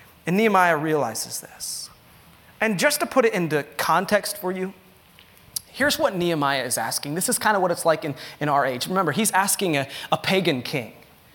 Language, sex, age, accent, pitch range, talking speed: English, male, 30-49, American, 150-210 Hz, 190 wpm